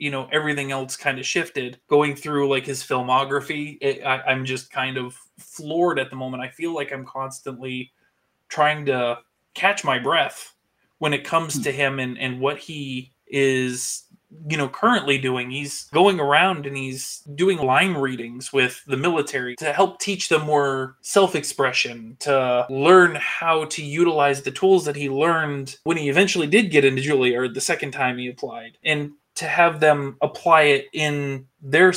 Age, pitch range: 20-39, 130-155 Hz